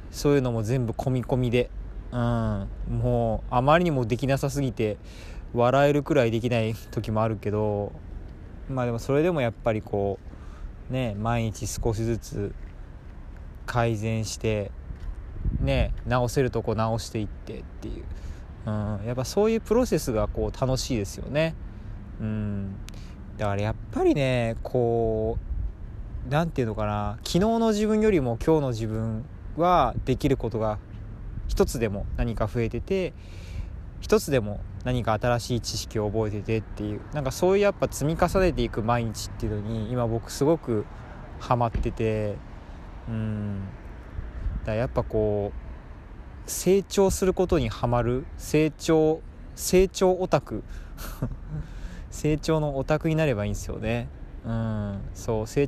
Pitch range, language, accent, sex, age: 105-130 Hz, Japanese, native, male, 20-39